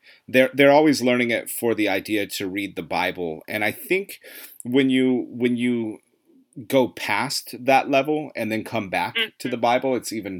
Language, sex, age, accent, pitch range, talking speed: English, male, 30-49, American, 100-125 Hz, 185 wpm